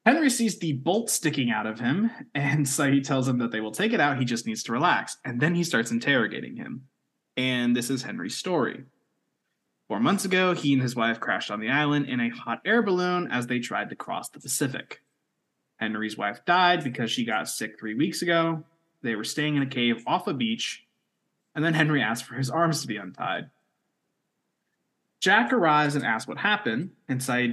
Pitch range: 120-165 Hz